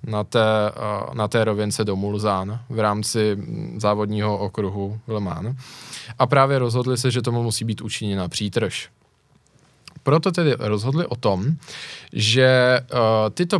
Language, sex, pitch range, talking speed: Czech, male, 115-150 Hz, 130 wpm